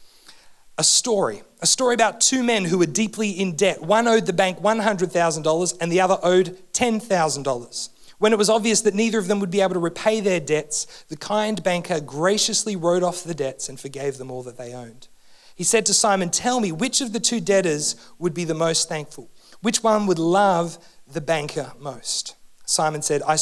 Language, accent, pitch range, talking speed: English, Australian, 160-225 Hz, 200 wpm